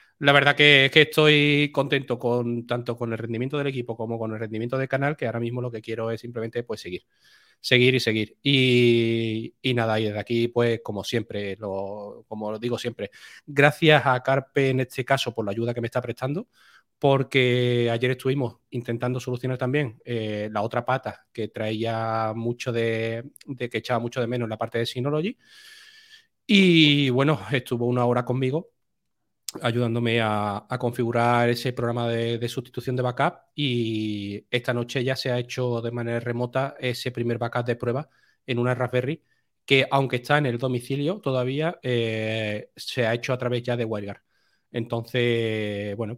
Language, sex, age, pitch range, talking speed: Spanish, male, 30-49, 115-135 Hz, 180 wpm